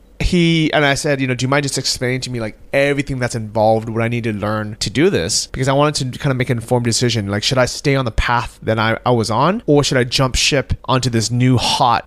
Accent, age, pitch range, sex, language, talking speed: American, 30-49, 115-145 Hz, male, English, 280 wpm